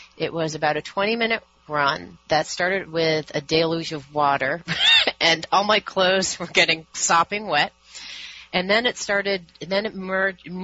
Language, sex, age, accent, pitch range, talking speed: English, female, 30-49, American, 155-205 Hz, 160 wpm